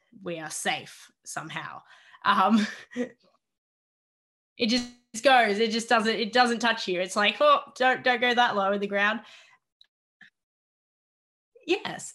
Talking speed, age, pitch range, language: 135 wpm, 10-29, 185-240 Hz, English